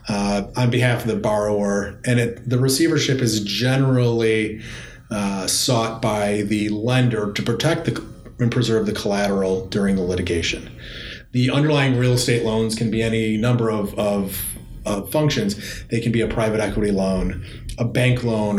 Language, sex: English, male